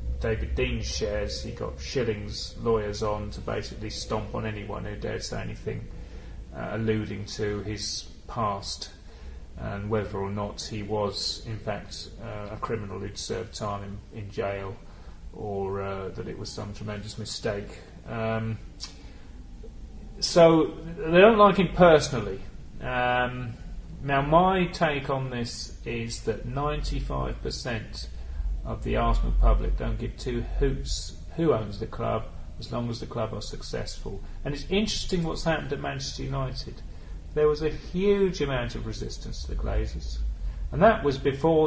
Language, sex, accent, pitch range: English, male, British, 100-150 Hz